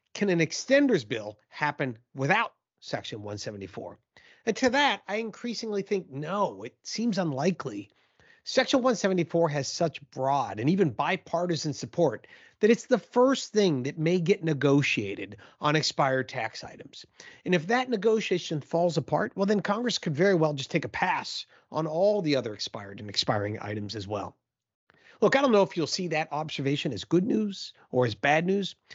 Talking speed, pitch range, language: 170 wpm, 135-195 Hz, English